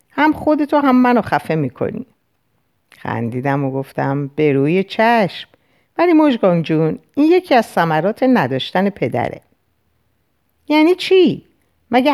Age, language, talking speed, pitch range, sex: 50-69, Persian, 115 wpm, 145-235 Hz, female